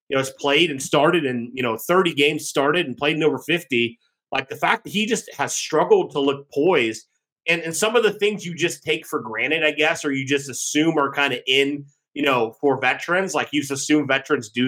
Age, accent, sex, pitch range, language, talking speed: 30-49, American, male, 140-205 Hz, English, 240 wpm